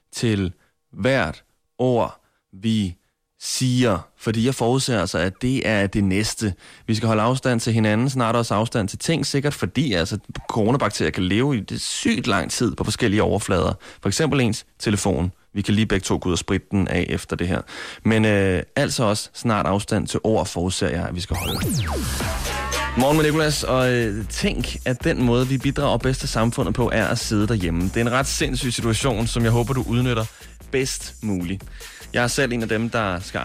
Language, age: Danish, 20-39